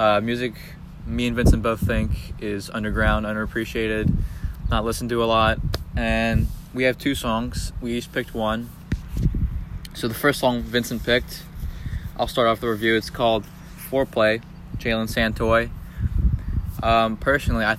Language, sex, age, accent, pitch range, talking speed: English, male, 20-39, American, 100-115 Hz, 145 wpm